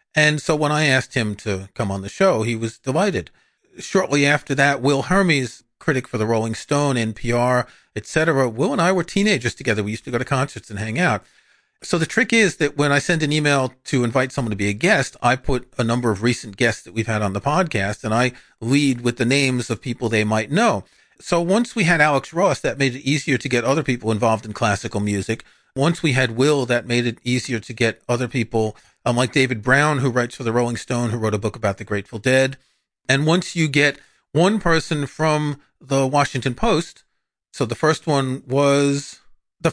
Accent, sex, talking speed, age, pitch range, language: American, male, 220 wpm, 40-59, 115-150 Hz, English